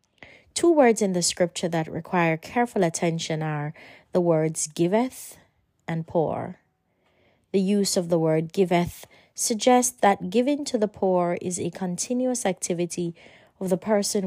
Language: English